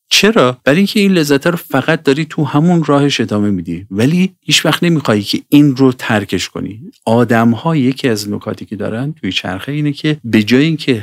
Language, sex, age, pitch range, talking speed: Persian, male, 50-69, 100-155 Hz, 190 wpm